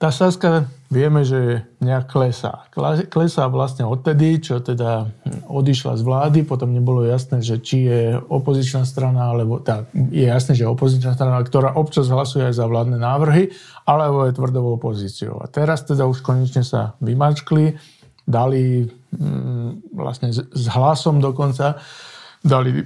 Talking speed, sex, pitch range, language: 140 wpm, male, 125-155 Hz, Slovak